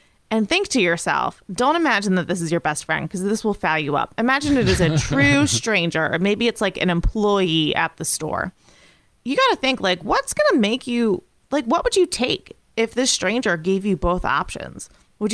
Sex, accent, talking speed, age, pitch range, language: female, American, 220 wpm, 30-49, 175-245 Hz, English